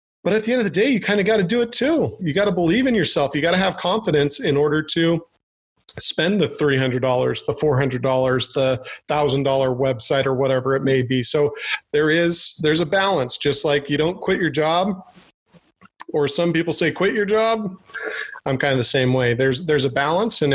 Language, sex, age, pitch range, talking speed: English, male, 40-59, 140-195 Hz, 215 wpm